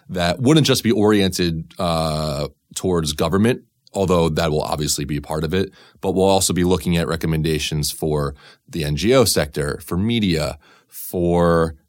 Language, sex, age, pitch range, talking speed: English, male, 30-49, 80-95 Hz, 160 wpm